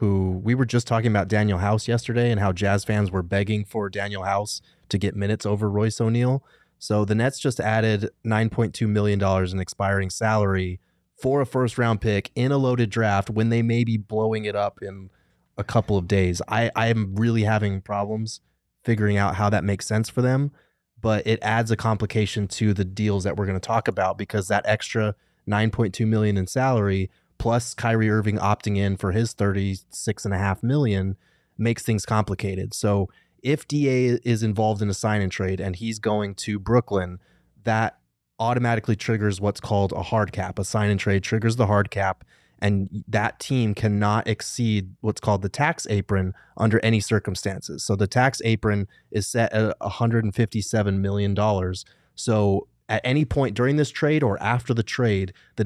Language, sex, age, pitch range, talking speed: English, male, 20-39, 100-115 Hz, 175 wpm